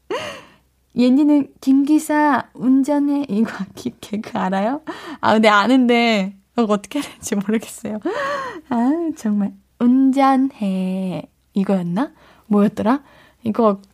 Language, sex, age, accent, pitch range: Korean, female, 20-39, native, 215-300 Hz